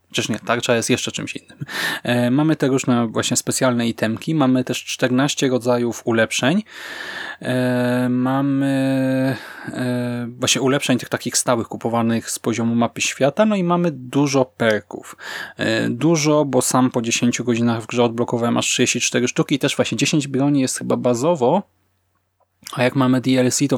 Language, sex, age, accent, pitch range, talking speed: Polish, male, 20-39, native, 115-130 Hz, 160 wpm